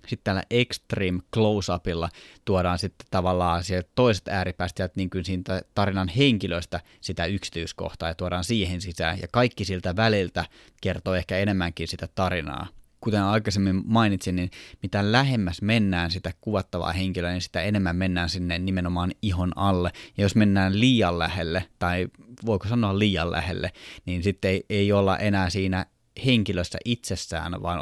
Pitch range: 90-110 Hz